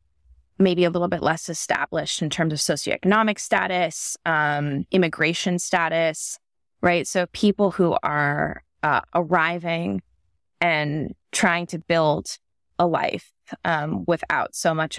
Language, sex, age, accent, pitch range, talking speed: English, female, 20-39, American, 145-175 Hz, 125 wpm